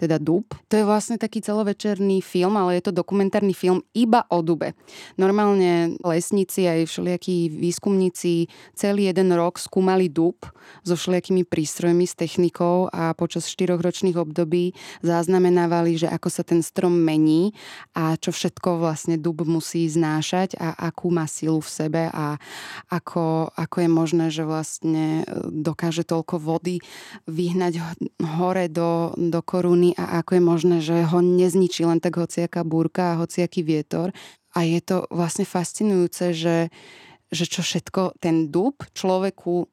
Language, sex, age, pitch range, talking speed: Slovak, female, 20-39, 165-185 Hz, 145 wpm